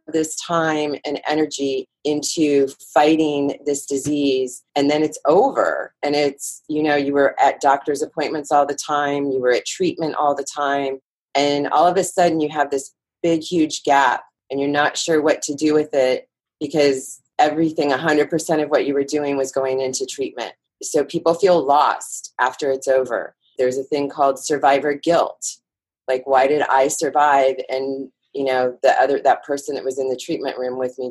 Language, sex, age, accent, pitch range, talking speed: English, female, 30-49, American, 135-155 Hz, 185 wpm